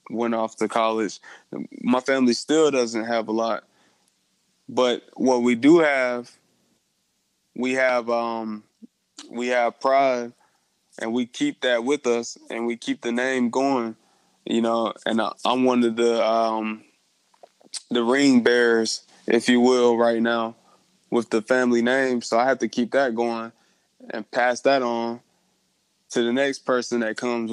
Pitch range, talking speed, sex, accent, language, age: 115-130 Hz, 155 wpm, male, American, English, 20-39